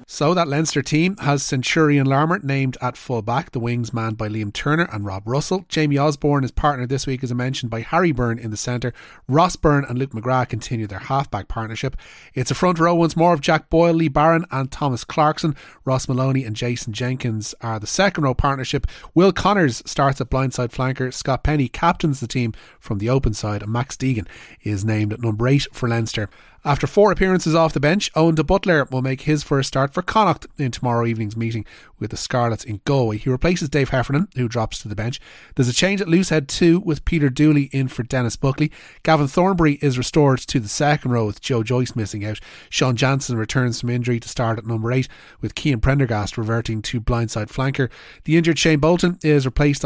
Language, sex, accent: English, male, Irish